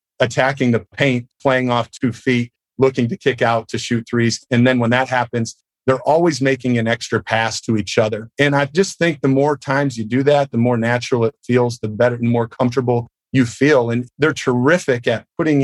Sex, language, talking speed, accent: male, English, 210 wpm, American